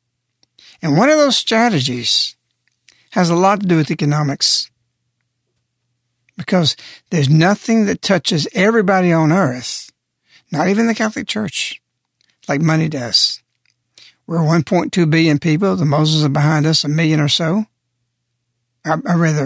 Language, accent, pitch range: English, American, 125-175 Hz